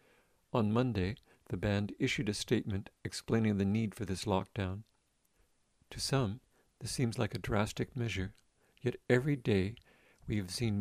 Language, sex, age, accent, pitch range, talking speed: English, male, 50-69, American, 95-120 Hz, 150 wpm